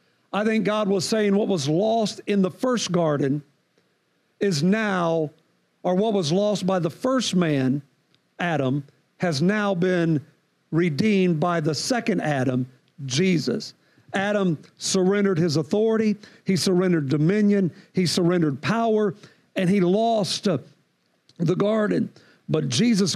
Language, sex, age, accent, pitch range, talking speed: English, male, 50-69, American, 160-200 Hz, 125 wpm